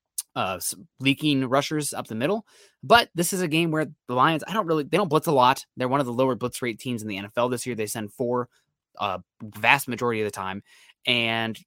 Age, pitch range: 20-39, 110-140 Hz